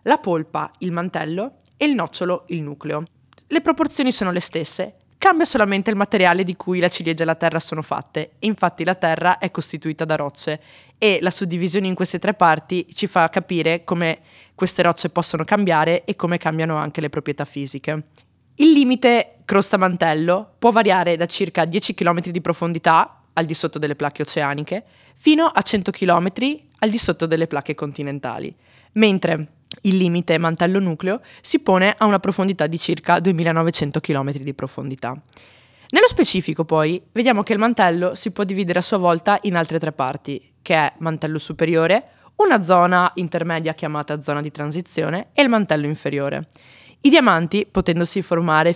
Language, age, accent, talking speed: Italian, 20-39, native, 165 wpm